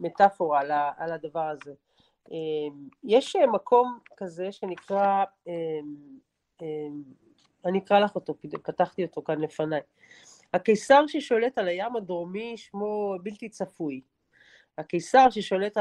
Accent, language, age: native, Hebrew, 40-59